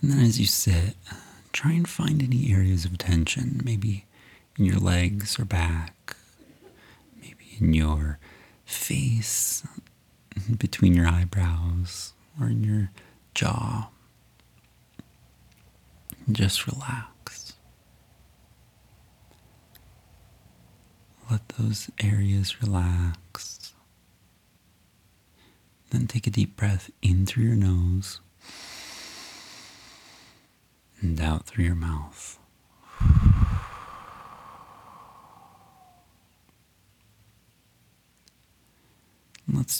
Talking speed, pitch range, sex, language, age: 75 wpm, 95-150 Hz, male, English, 30-49